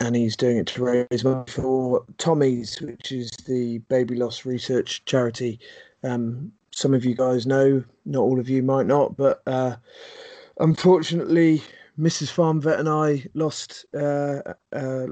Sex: male